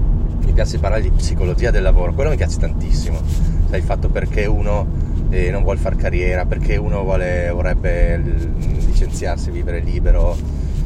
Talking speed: 150 wpm